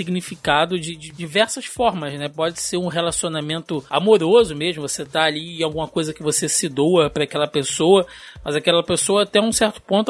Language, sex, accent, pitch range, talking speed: Portuguese, male, Brazilian, 150-205 Hz, 190 wpm